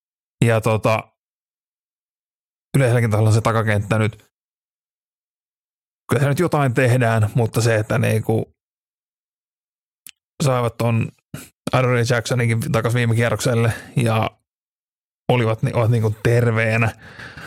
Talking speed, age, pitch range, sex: 100 wpm, 30-49, 115-130 Hz, male